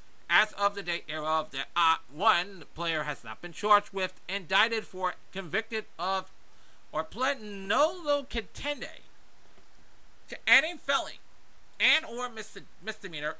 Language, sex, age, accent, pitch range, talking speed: English, male, 40-59, American, 145-210 Hz, 135 wpm